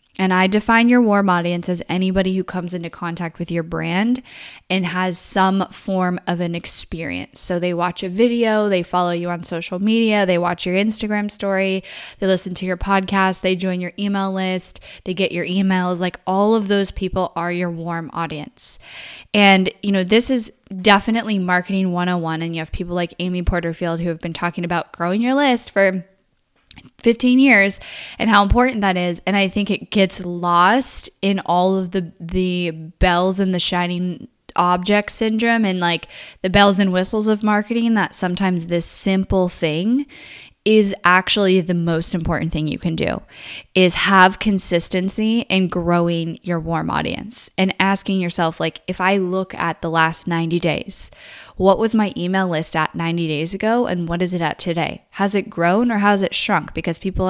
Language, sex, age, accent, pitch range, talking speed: English, female, 10-29, American, 175-200 Hz, 185 wpm